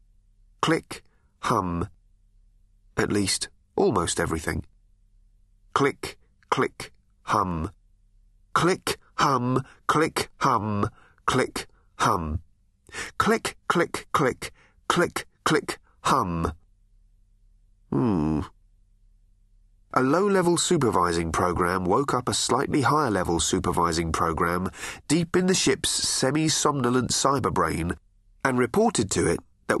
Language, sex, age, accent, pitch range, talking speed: English, male, 30-49, British, 95-120 Hz, 90 wpm